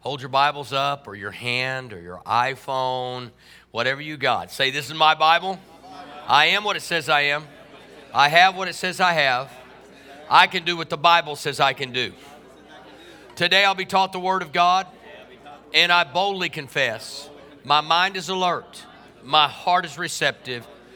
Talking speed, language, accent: 180 wpm, English, American